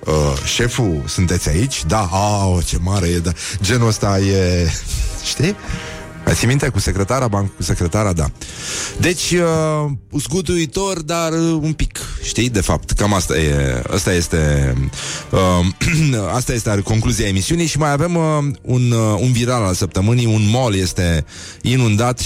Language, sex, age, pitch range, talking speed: Romanian, male, 30-49, 90-120 Hz, 145 wpm